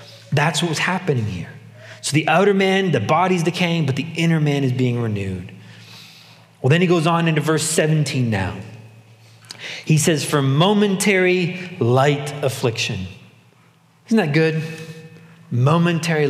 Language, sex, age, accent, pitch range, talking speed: English, male, 30-49, American, 125-170 Hz, 140 wpm